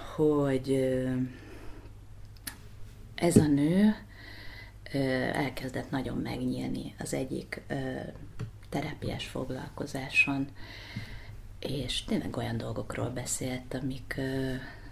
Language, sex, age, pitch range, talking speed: Hungarian, female, 30-49, 105-140 Hz, 70 wpm